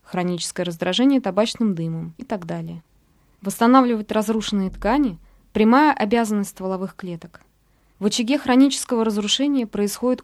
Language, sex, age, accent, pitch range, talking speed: Russian, female, 20-39, native, 185-235 Hz, 110 wpm